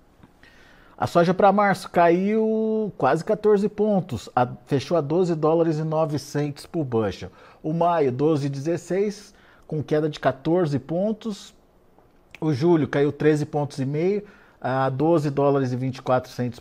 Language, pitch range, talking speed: Portuguese, 135-170 Hz, 135 wpm